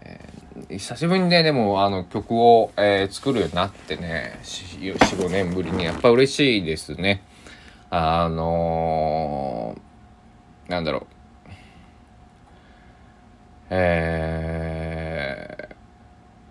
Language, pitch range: Japanese, 80-105 Hz